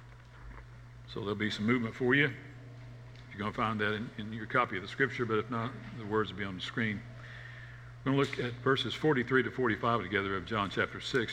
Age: 60-79